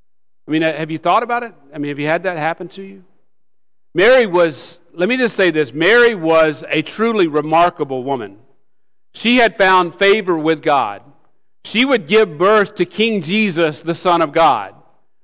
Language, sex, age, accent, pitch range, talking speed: English, male, 50-69, American, 160-210 Hz, 180 wpm